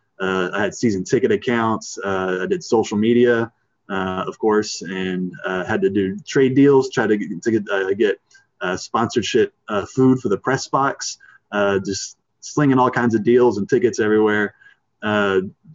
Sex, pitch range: male, 100-115 Hz